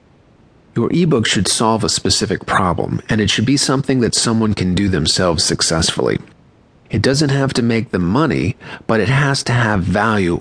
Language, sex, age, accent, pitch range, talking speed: English, male, 40-59, American, 95-120 Hz, 180 wpm